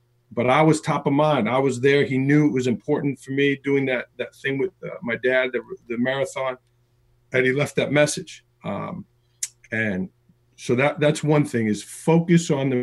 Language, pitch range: English, 125-150 Hz